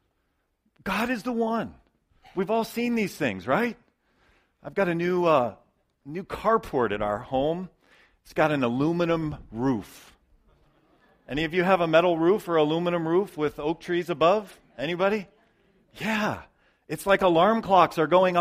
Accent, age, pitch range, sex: American, 40-59, 160-240 Hz, male